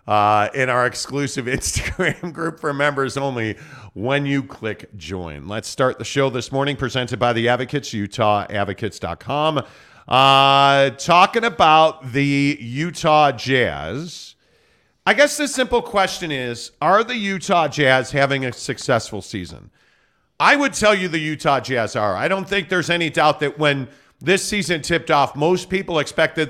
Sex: male